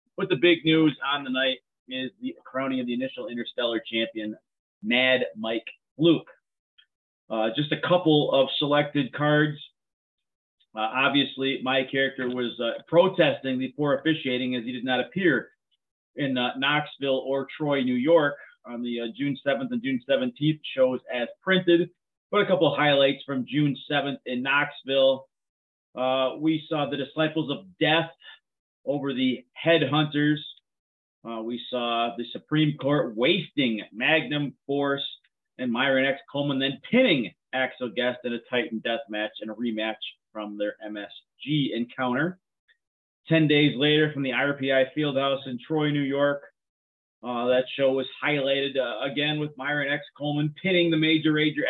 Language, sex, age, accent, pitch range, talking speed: English, male, 30-49, American, 125-155 Hz, 155 wpm